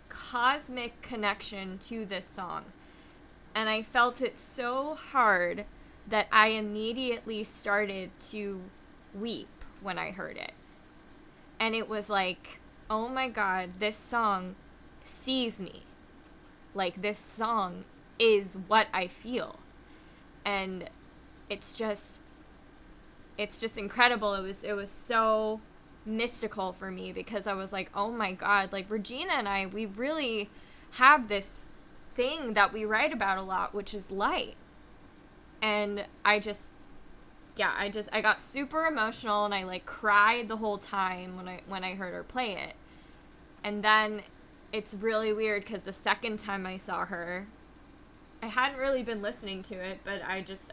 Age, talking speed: 20-39, 150 wpm